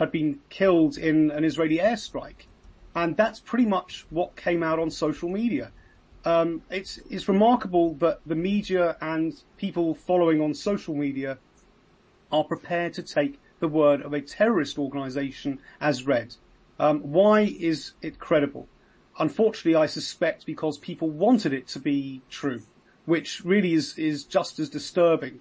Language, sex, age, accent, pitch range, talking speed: English, male, 30-49, British, 145-175 Hz, 150 wpm